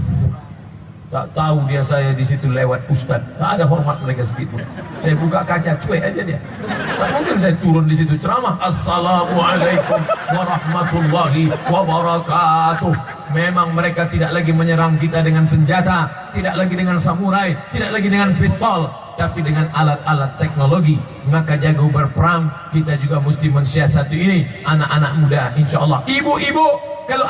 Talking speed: 140 wpm